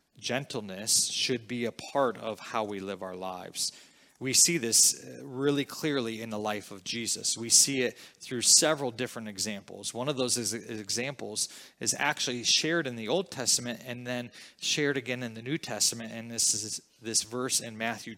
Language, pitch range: English, 110-140 Hz